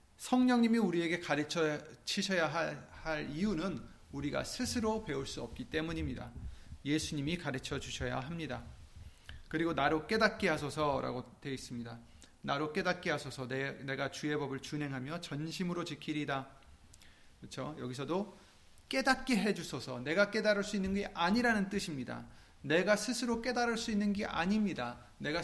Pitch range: 140-200 Hz